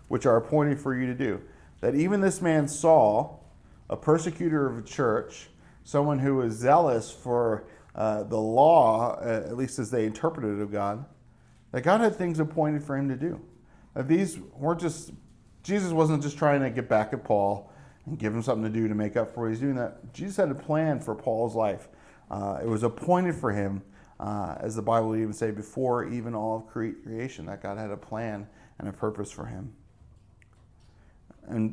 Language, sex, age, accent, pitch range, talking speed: English, male, 40-59, American, 110-140 Hz, 195 wpm